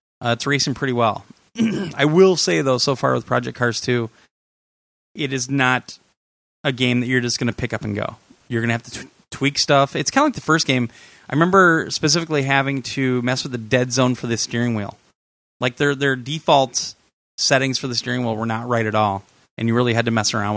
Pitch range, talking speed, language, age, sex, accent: 115-140 Hz, 230 wpm, English, 30-49, male, American